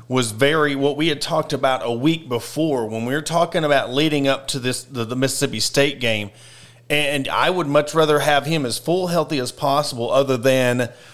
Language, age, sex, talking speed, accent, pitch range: English, 30-49, male, 205 wpm, American, 120-150 Hz